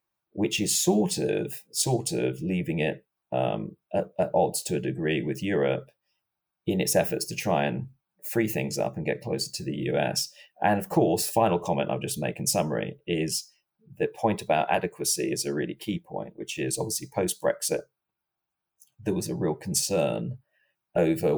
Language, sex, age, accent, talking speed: English, male, 40-59, British, 175 wpm